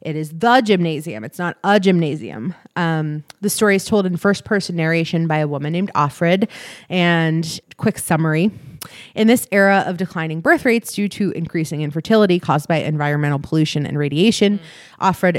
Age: 30-49